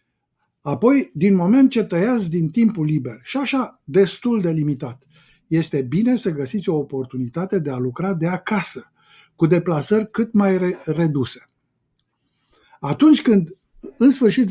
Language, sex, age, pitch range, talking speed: Romanian, male, 50-69, 150-210 Hz, 135 wpm